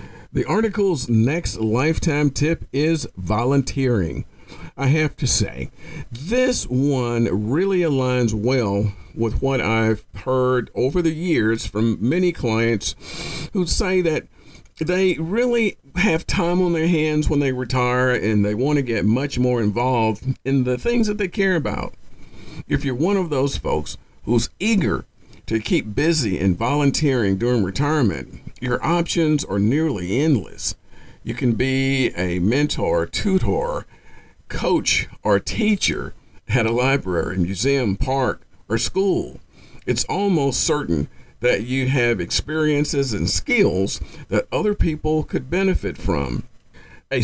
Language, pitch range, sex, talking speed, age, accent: English, 110-160 Hz, male, 135 wpm, 50-69, American